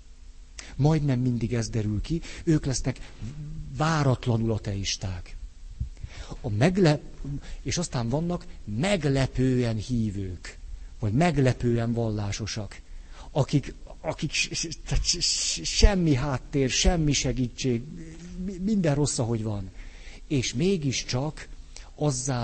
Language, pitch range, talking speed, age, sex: Hungarian, 90-140 Hz, 80 wpm, 60-79, male